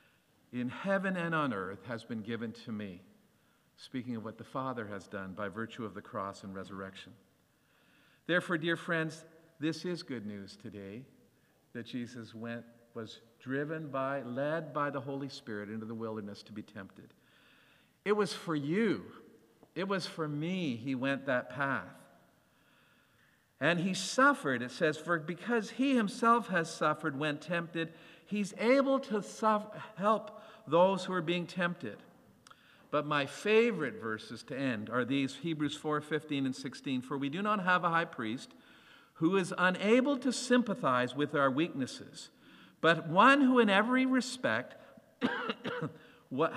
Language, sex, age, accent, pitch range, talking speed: English, male, 50-69, American, 125-195 Hz, 155 wpm